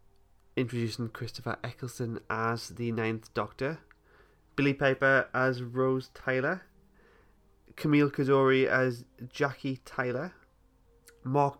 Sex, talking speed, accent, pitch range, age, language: male, 95 wpm, British, 110-140 Hz, 30-49, English